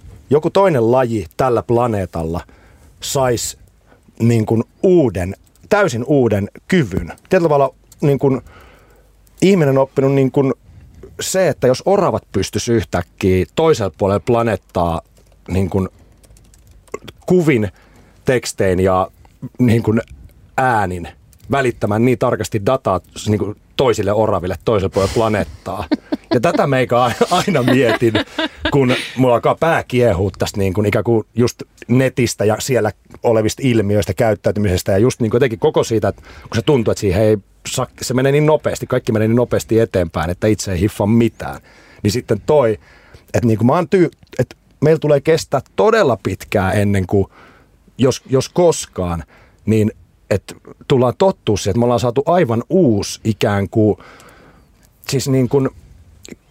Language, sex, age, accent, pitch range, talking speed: Finnish, male, 30-49, native, 95-130 Hz, 135 wpm